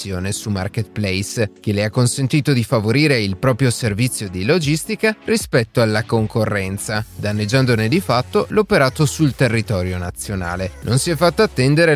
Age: 30-49